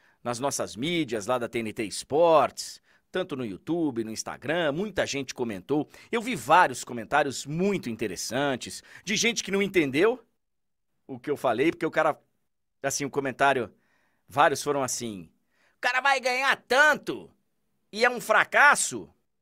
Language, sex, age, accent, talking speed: Portuguese, male, 50-69, Brazilian, 150 wpm